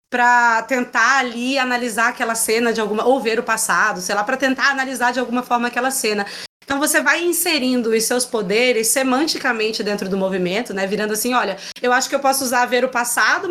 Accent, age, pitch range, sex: Brazilian, 20-39, 215-265 Hz, female